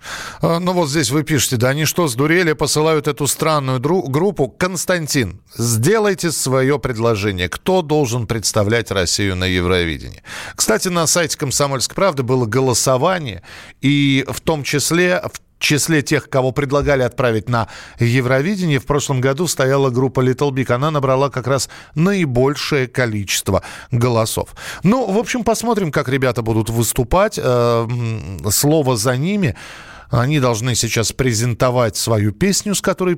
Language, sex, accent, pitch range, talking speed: Russian, male, native, 115-155 Hz, 240 wpm